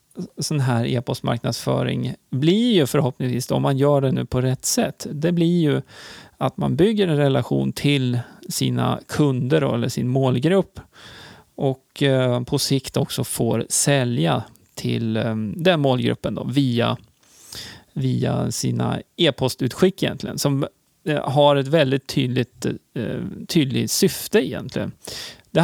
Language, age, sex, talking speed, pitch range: Swedish, 30-49, male, 115 wpm, 125-170 Hz